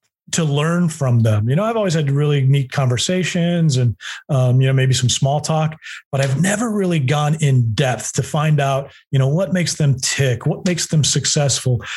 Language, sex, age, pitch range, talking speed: English, male, 30-49, 130-155 Hz, 200 wpm